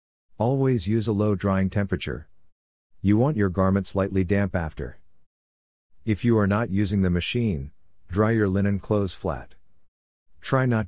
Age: 50-69